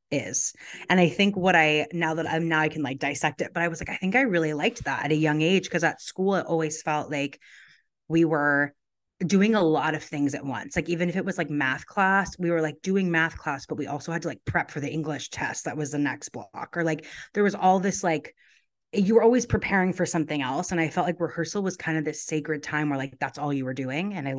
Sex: female